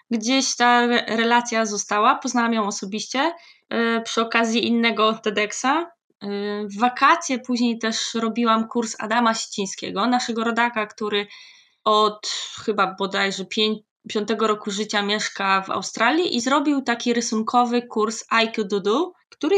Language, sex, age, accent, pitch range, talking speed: Polish, female, 20-39, native, 205-250 Hz, 115 wpm